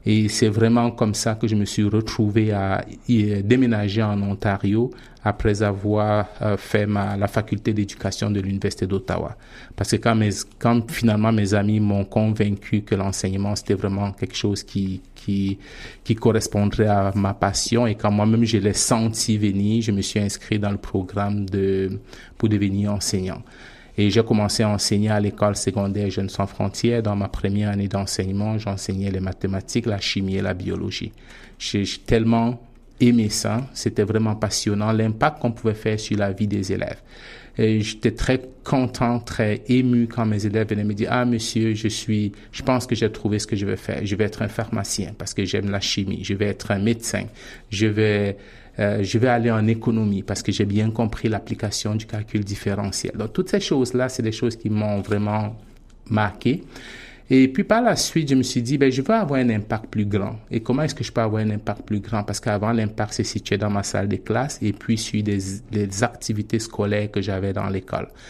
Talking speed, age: 200 wpm, 30-49